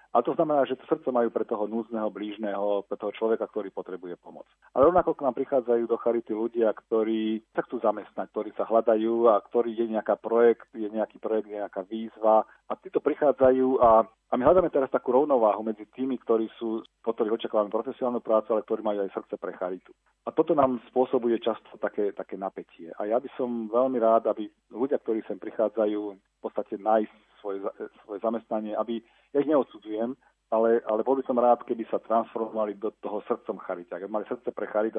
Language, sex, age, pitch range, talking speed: Slovak, male, 40-59, 110-120 Hz, 200 wpm